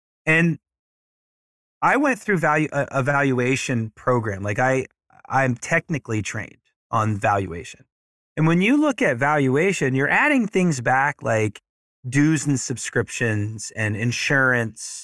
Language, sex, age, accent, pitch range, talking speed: English, male, 30-49, American, 115-165 Hz, 115 wpm